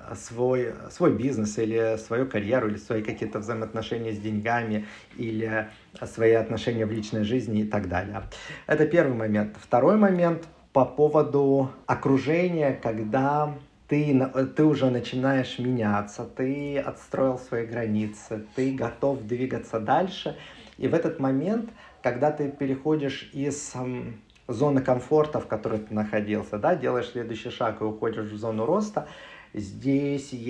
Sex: male